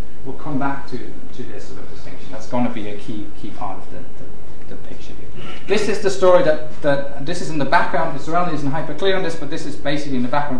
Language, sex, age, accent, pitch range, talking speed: English, male, 20-39, British, 115-150 Hz, 270 wpm